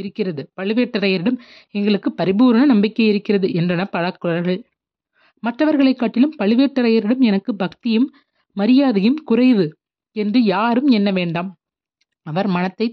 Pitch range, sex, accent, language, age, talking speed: 200-250 Hz, female, native, Tamil, 30-49, 95 wpm